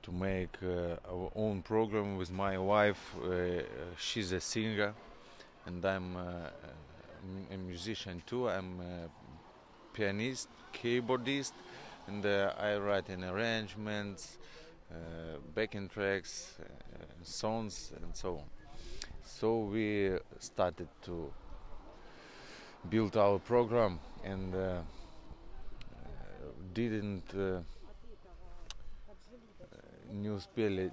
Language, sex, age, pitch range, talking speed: English, male, 30-49, 90-110 Hz, 95 wpm